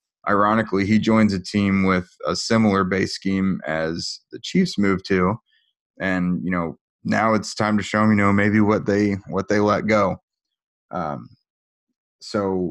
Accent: American